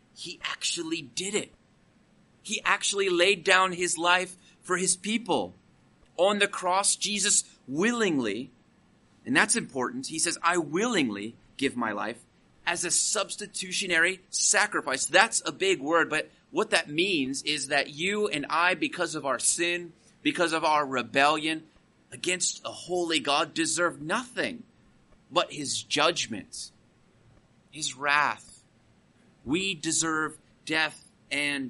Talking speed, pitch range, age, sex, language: 130 wpm, 145-180 Hz, 30-49, male, English